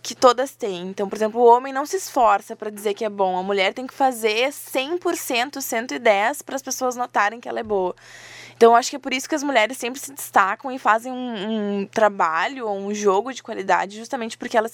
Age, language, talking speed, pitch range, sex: 20-39, Portuguese, 230 wpm, 205-255 Hz, female